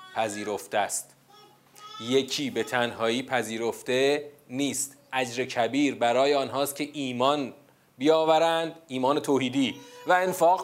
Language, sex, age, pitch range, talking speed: Persian, male, 30-49, 115-150 Hz, 100 wpm